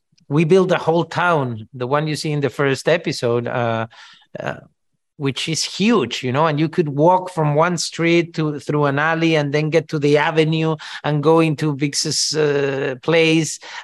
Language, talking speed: English, 185 wpm